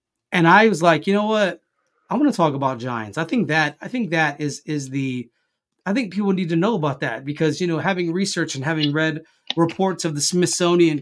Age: 30-49